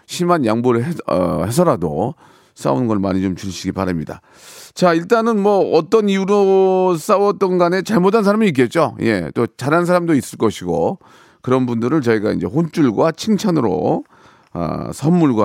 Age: 40-59